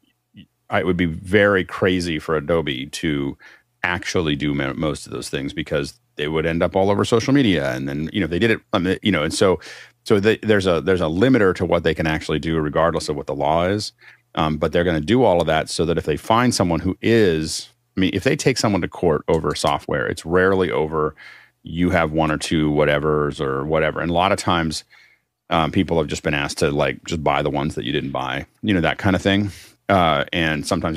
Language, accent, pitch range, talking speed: English, American, 80-105 Hz, 235 wpm